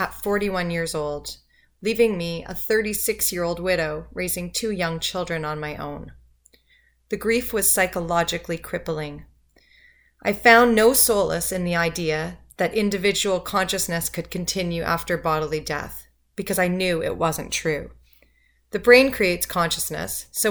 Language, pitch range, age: English, 165-210 Hz, 30-49